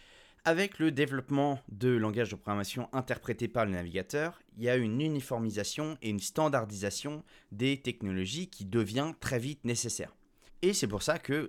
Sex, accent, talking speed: male, French, 160 wpm